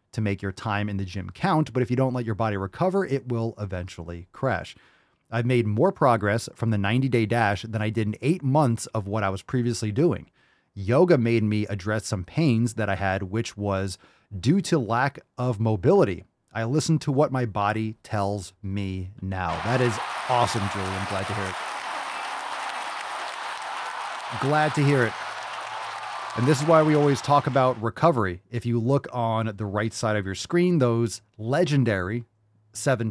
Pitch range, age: 105-135 Hz, 30-49